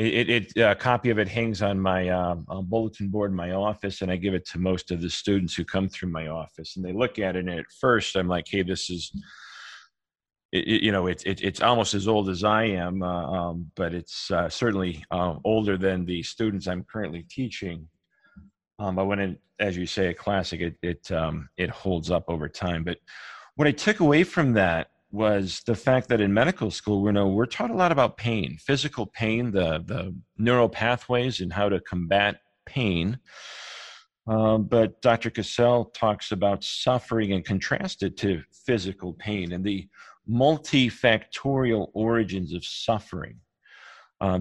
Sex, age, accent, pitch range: male, 40-59, American, 90-115 Hz